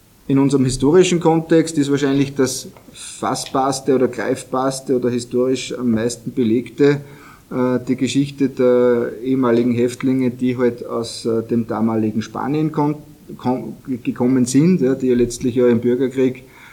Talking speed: 145 wpm